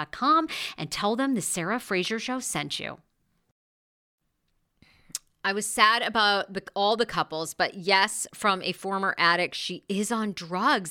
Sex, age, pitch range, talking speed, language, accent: female, 40-59, 160-230 Hz, 145 wpm, English, American